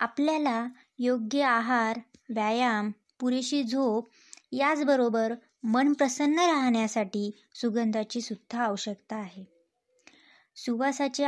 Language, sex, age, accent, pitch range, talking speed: Marathi, male, 20-39, native, 220-275 Hz, 80 wpm